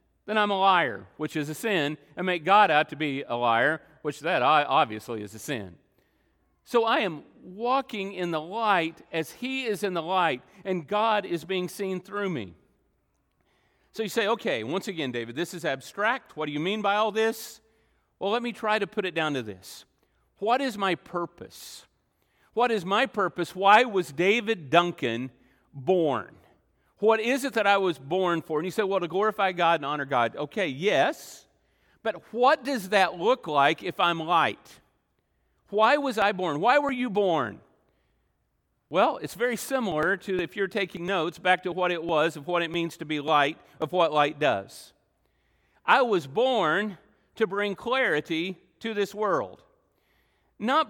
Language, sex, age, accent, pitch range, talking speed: English, male, 50-69, American, 160-210 Hz, 180 wpm